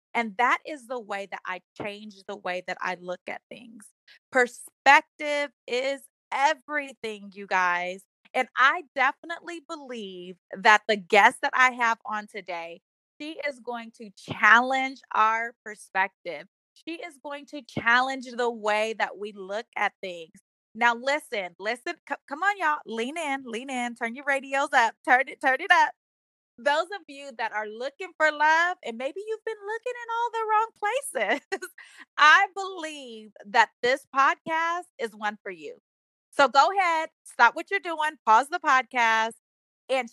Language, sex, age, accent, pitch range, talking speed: English, female, 20-39, American, 220-310 Hz, 160 wpm